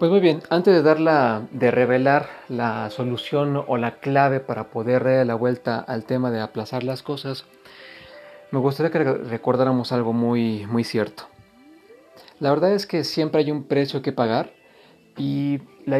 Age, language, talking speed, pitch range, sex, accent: 40-59, Spanish, 175 wpm, 115-140 Hz, male, Mexican